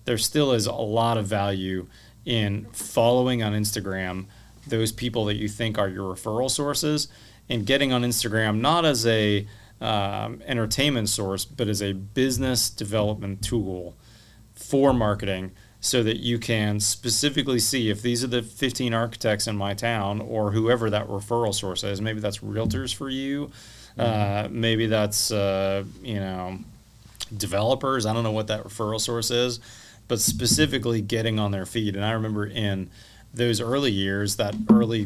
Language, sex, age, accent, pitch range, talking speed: English, male, 30-49, American, 105-120 Hz, 160 wpm